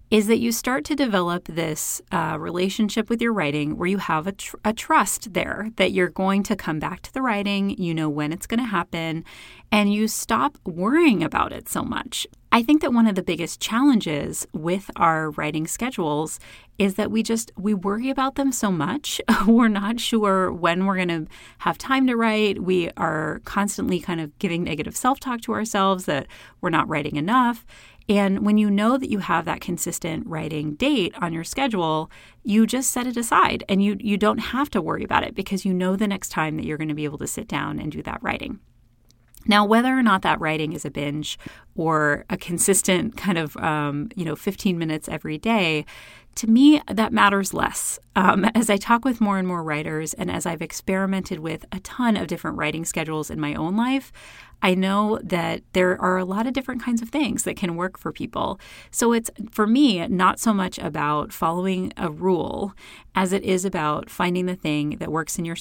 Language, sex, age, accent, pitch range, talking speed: English, female, 30-49, American, 165-225 Hz, 210 wpm